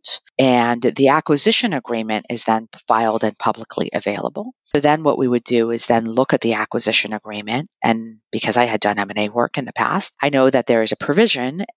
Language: English